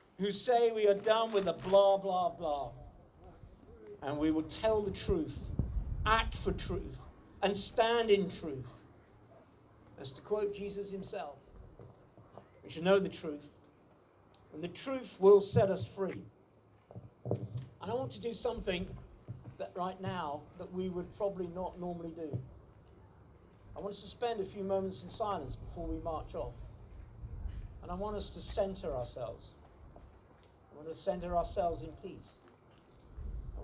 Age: 50-69